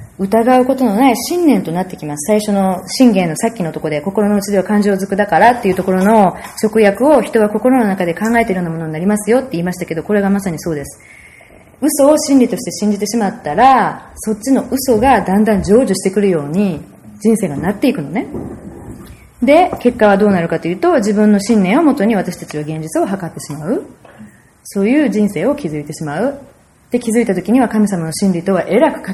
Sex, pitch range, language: female, 175-235 Hz, Japanese